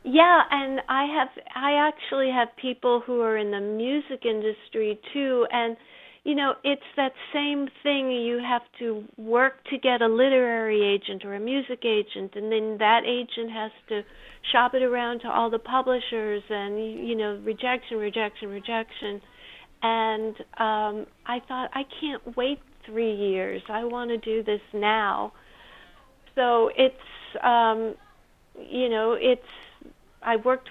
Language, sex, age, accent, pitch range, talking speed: English, female, 50-69, American, 210-250 Hz, 150 wpm